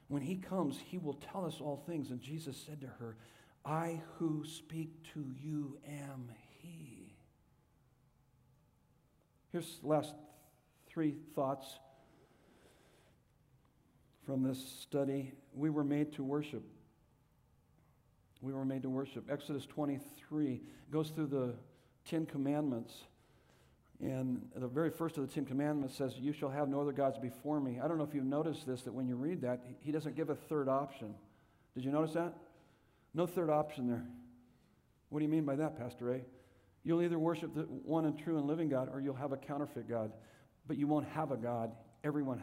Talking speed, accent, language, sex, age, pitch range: 170 wpm, American, English, male, 60-79, 130-150 Hz